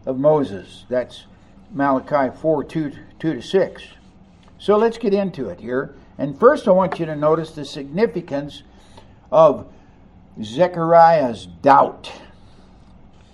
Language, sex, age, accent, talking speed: English, male, 60-79, American, 115 wpm